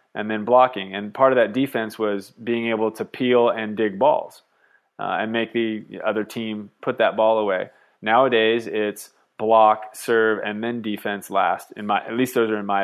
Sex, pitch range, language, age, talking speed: male, 100-115 Hz, English, 20-39, 195 wpm